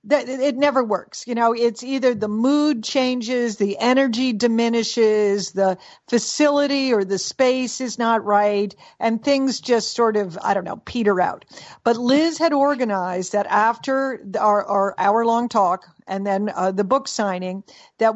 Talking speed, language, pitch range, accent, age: 160 wpm, English, 205-245 Hz, American, 50-69